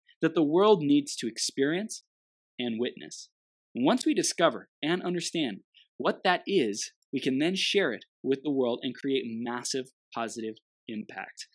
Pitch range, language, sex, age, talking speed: 120-190 Hz, English, male, 20-39, 150 wpm